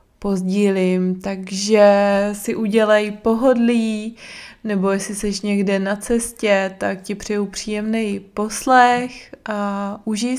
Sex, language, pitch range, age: female, Czech, 195-235 Hz, 20-39